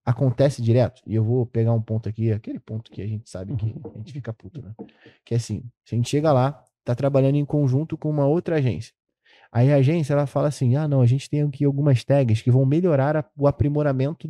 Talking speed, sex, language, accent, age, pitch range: 235 wpm, male, Portuguese, Brazilian, 20-39, 115-145 Hz